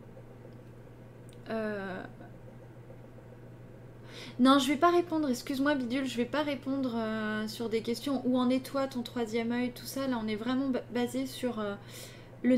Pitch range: 215-255 Hz